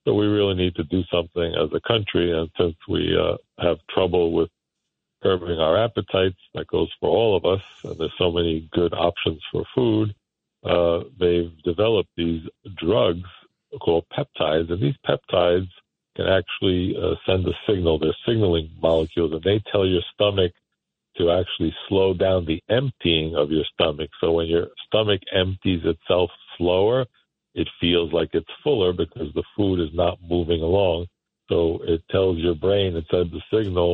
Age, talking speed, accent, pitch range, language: 60-79, 170 wpm, American, 85-95 Hz, English